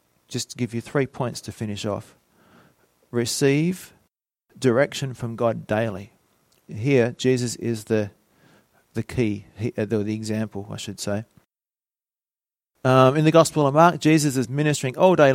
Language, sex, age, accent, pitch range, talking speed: English, male, 40-59, Australian, 105-135 Hz, 145 wpm